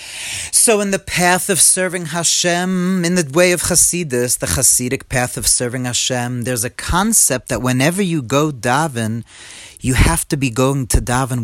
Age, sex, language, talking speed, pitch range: 40-59, male, English, 175 wpm, 120-170 Hz